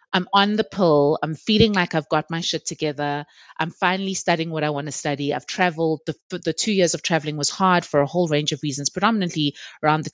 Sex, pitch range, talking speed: female, 150-180 Hz, 230 wpm